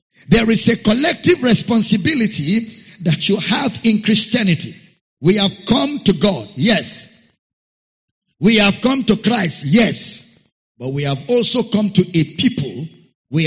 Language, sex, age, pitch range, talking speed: English, male, 50-69, 185-240 Hz, 140 wpm